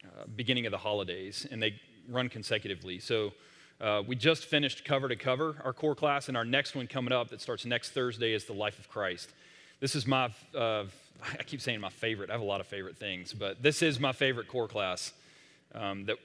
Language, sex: English, male